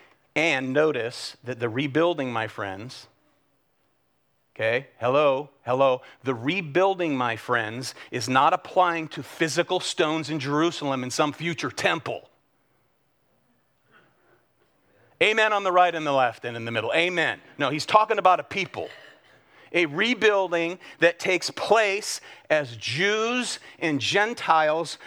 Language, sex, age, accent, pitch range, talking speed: English, male, 40-59, American, 140-195 Hz, 125 wpm